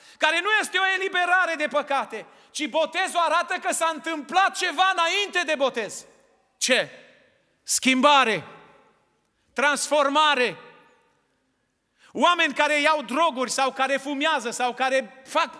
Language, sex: Romanian, male